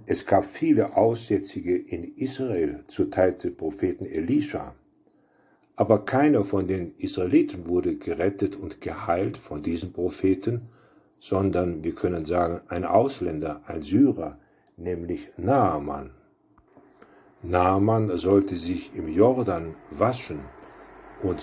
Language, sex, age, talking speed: German, male, 50-69, 105 wpm